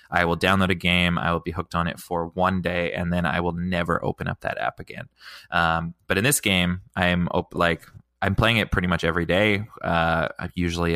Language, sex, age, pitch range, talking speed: English, male, 20-39, 85-105 Hz, 225 wpm